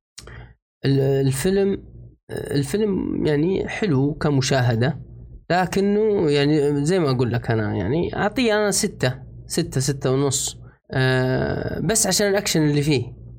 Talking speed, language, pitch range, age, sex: 110 wpm, Arabic, 125-170 Hz, 30-49, male